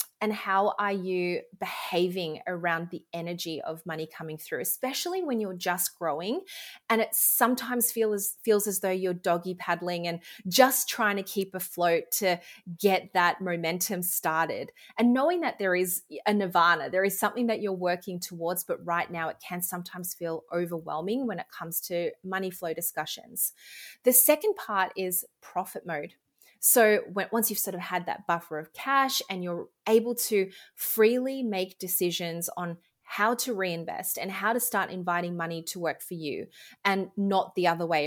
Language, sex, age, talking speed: English, female, 30-49, 175 wpm